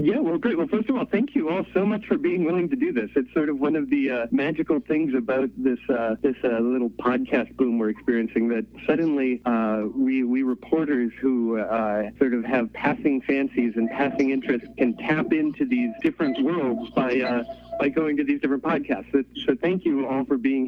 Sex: male